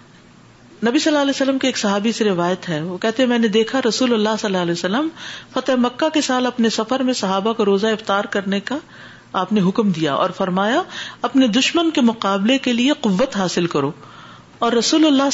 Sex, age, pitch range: female, 50-69, 180-250 Hz